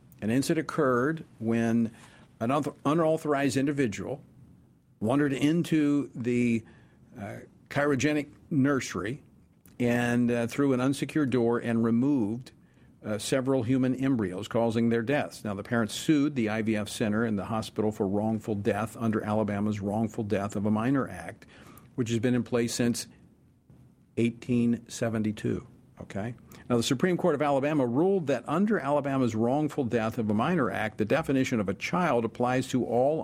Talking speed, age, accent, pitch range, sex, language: 145 wpm, 50-69, American, 110-140 Hz, male, English